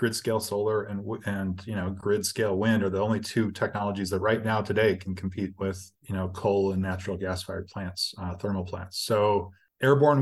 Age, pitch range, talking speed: 20-39, 95-115 Hz, 190 wpm